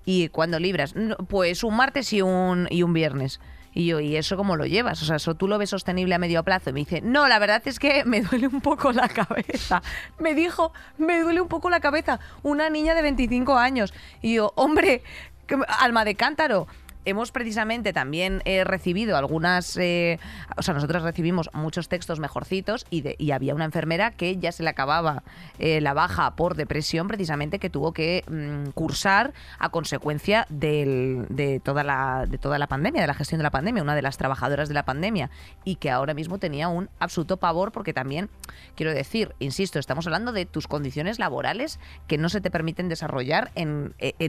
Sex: female